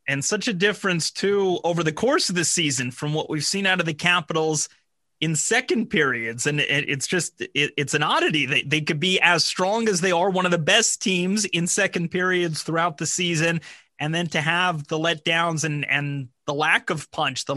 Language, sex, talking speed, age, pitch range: English, male, 215 wpm, 30-49, 150-185 Hz